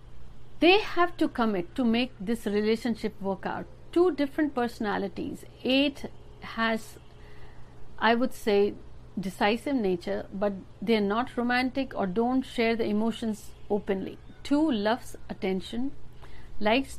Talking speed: 125 wpm